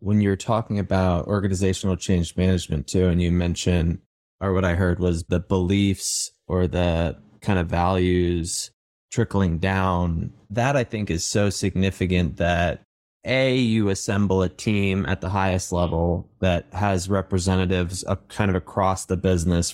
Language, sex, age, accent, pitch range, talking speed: English, male, 20-39, American, 90-100 Hz, 150 wpm